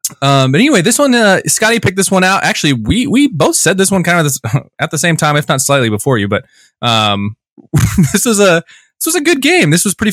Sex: male